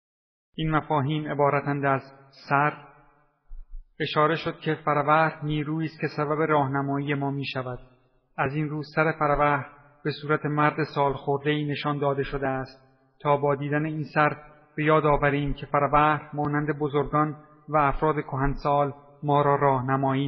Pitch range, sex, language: 140-150 Hz, male, Persian